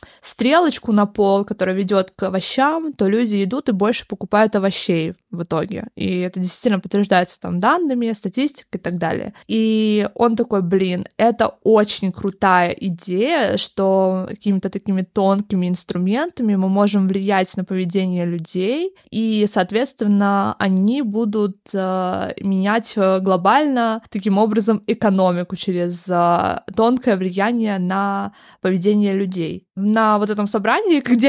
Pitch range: 195-235 Hz